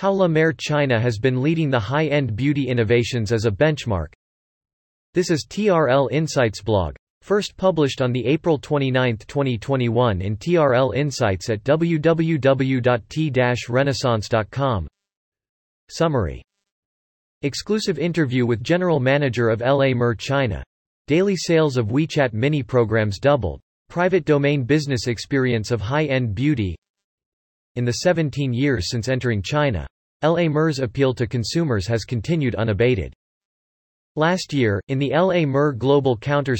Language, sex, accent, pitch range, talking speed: English, male, American, 115-150 Hz, 130 wpm